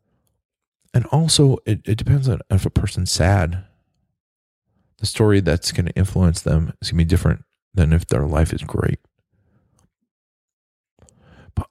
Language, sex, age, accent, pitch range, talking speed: English, male, 40-59, American, 80-105 Hz, 150 wpm